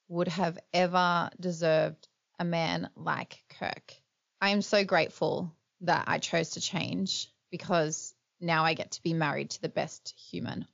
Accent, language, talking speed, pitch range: Australian, English, 155 wpm, 170-210 Hz